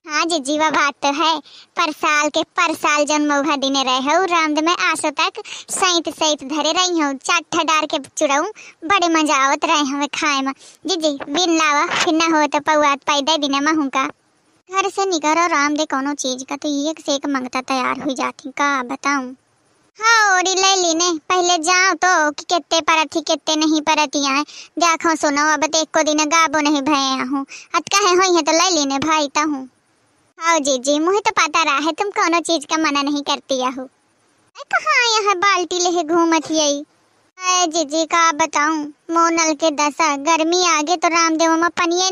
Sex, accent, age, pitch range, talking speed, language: male, native, 20-39, 295-345 Hz, 145 wpm, Hindi